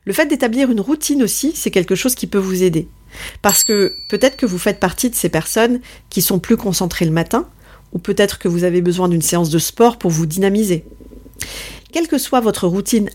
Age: 40-59